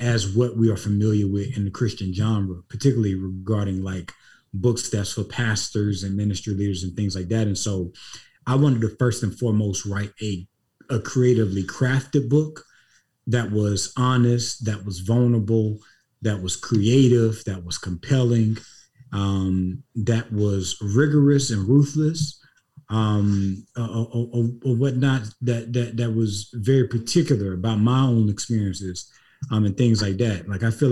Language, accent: English, American